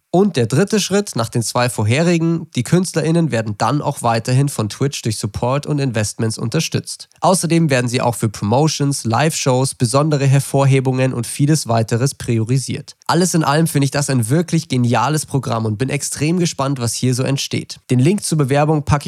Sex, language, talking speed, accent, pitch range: male, German, 180 wpm, German, 120-150 Hz